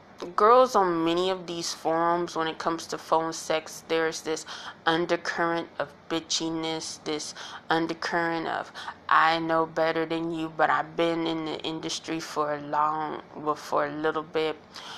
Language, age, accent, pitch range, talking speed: English, 20-39, American, 155-170 Hz, 155 wpm